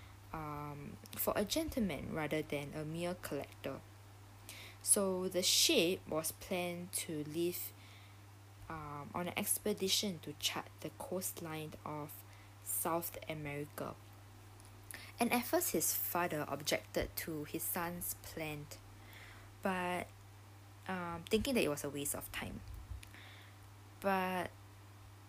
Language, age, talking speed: English, 20-39, 115 wpm